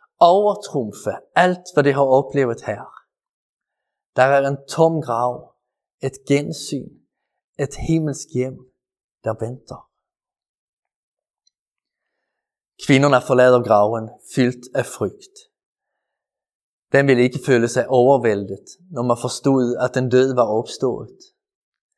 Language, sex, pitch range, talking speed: Danish, male, 130-165 Hz, 105 wpm